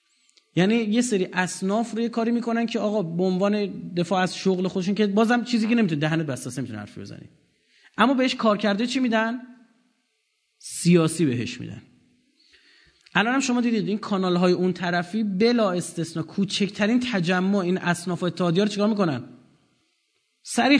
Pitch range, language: 175-235 Hz, Persian